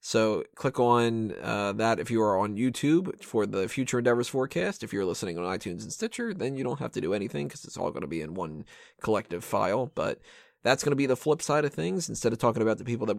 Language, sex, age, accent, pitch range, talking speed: English, male, 20-39, American, 110-150 Hz, 255 wpm